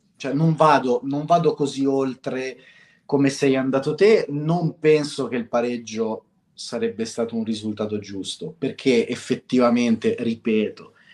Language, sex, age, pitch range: Italian, male, 30-49, 125-170 Hz